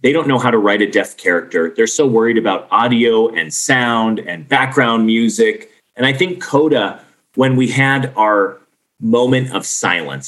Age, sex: 30-49, male